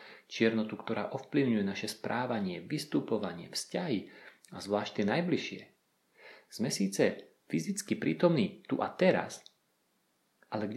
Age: 40-59